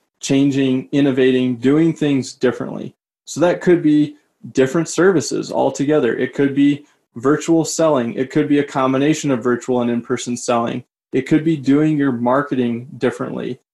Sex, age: male, 20-39